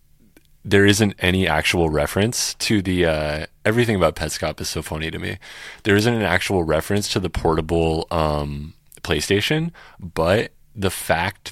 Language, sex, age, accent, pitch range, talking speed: English, male, 30-49, American, 80-95 Hz, 150 wpm